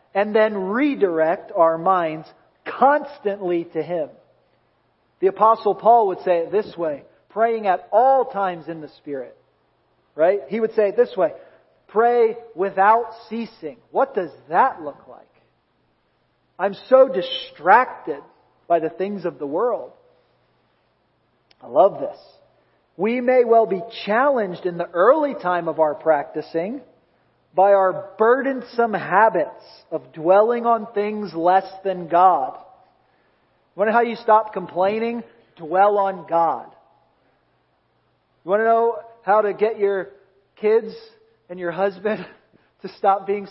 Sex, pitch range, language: male, 170-225 Hz, English